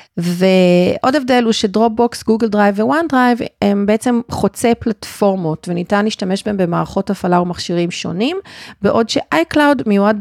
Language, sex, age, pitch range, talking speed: Hebrew, female, 40-59, 170-220 Hz, 140 wpm